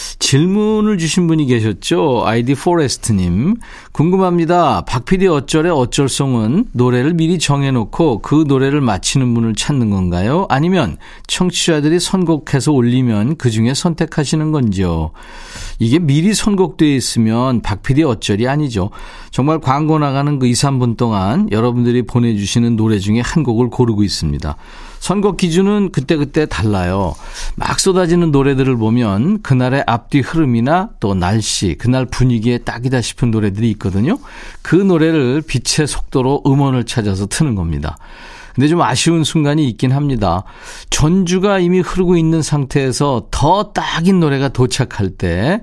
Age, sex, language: 40-59, male, Korean